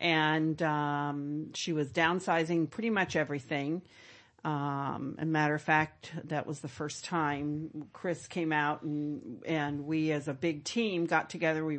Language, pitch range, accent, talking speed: English, 150-170 Hz, American, 160 wpm